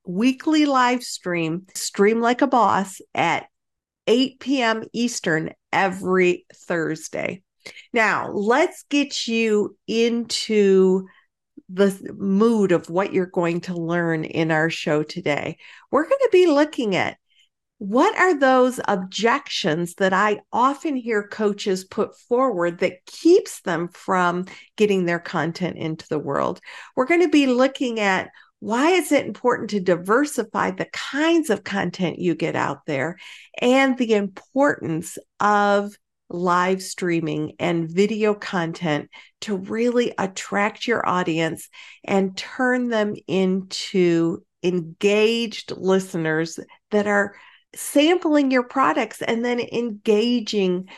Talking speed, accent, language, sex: 125 wpm, American, English, female